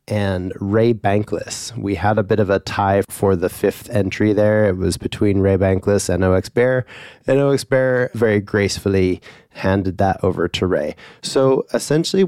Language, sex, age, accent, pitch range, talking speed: English, male, 30-49, American, 95-115 Hz, 170 wpm